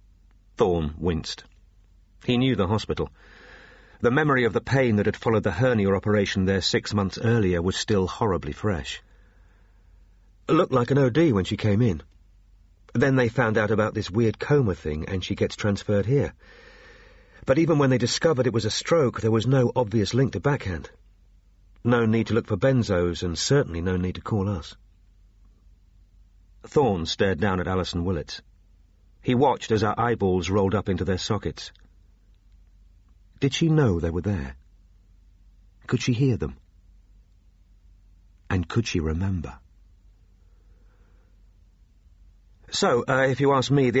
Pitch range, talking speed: 90-110 Hz, 155 wpm